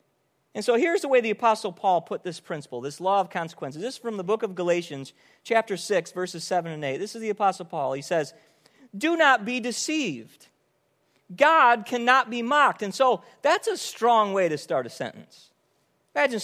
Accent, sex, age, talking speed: American, male, 40-59, 195 wpm